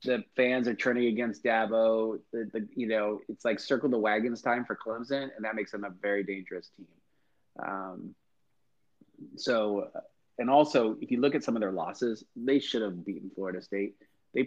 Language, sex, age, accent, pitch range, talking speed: English, male, 30-49, American, 100-130 Hz, 185 wpm